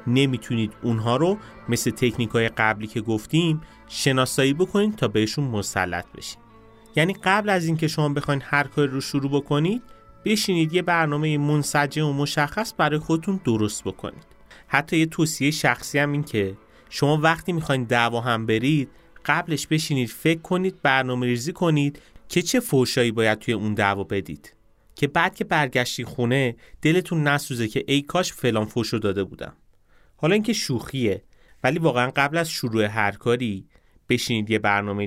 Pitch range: 110-160 Hz